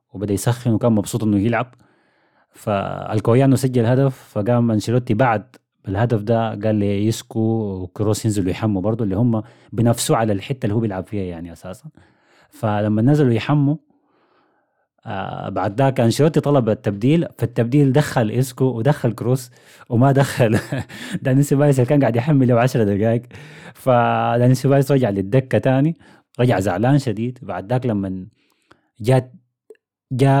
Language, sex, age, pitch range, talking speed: Arabic, male, 30-49, 105-135 Hz, 135 wpm